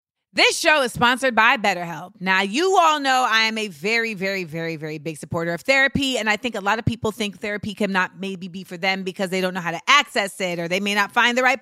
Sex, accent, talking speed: female, American, 260 wpm